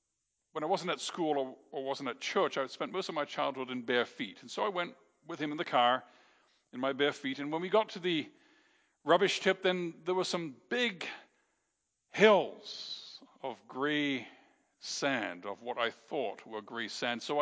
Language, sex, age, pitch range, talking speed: English, male, 50-69, 130-195 Hz, 195 wpm